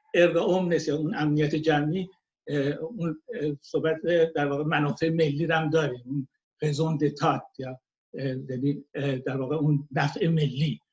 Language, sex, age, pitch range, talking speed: Persian, male, 60-79, 145-175 Hz, 115 wpm